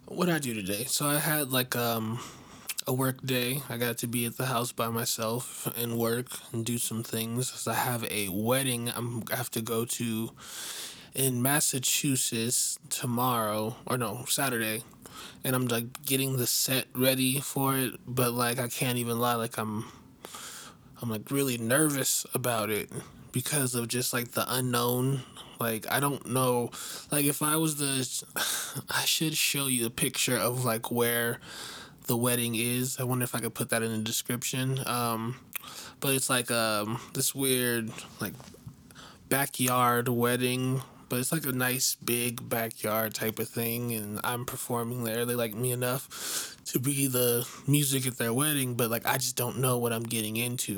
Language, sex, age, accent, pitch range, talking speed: English, male, 20-39, American, 115-130 Hz, 175 wpm